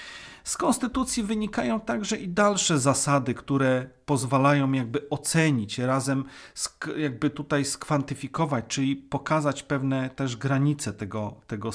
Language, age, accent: Polish, 40-59, native